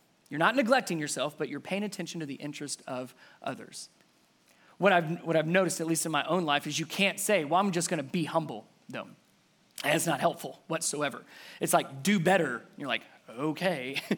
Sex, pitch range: male, 175-230 Hz